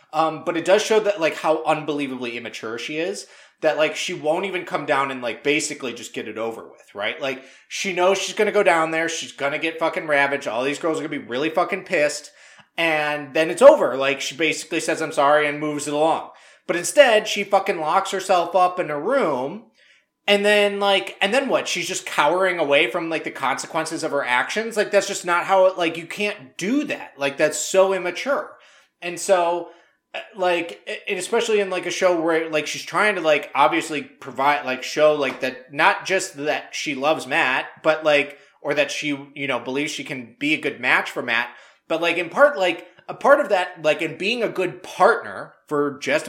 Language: English